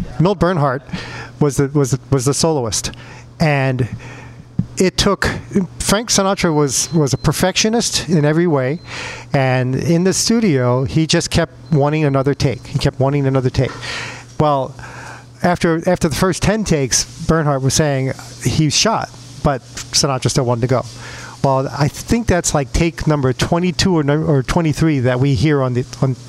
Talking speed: 165 wpm